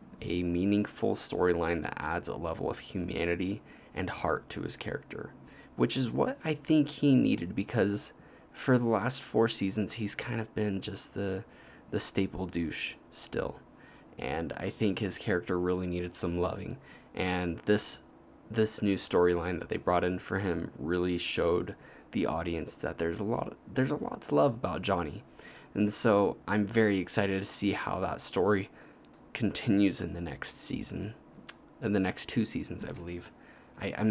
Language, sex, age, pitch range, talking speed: English, male, 20-39, 90-110 Hz, 170 wpm